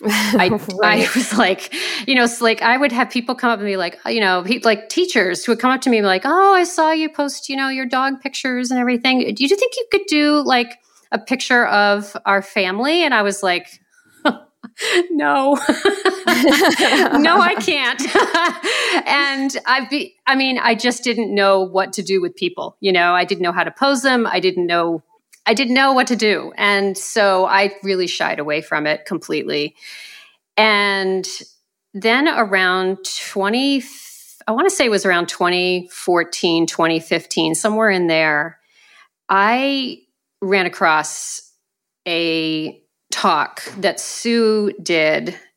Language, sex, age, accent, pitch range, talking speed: English, female, 40-59, American, 185-270 Hz, 165 wpm